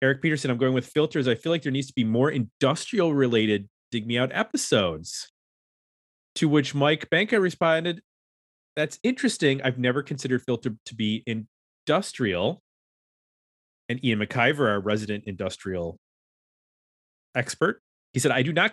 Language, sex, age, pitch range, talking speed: English, male, 30-49, 105-135 Hz, 140 wpm